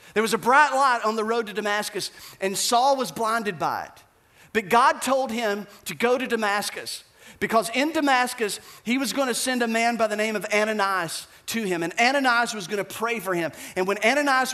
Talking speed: 205 wpm